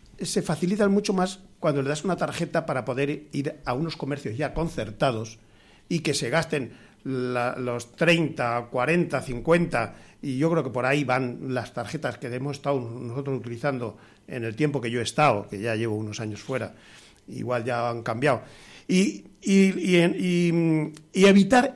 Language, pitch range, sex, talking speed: Spanish, 130-175 Hz, male, 170 wpm